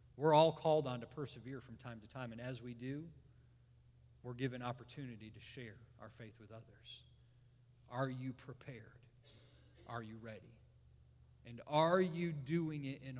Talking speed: 160 wpm